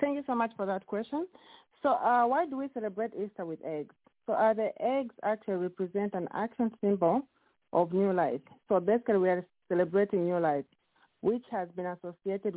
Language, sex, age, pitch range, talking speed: English, female, 40-59, 175-230 Hz, 190 wpm